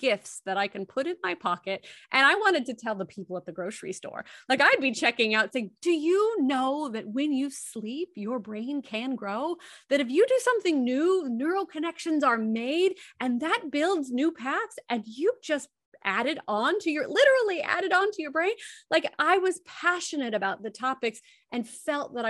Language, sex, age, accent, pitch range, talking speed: English, female, 30-49, American, 220-305 Hz, 200 wpm